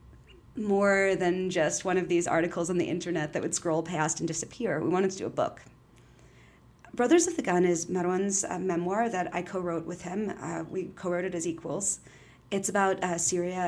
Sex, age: female, 30-49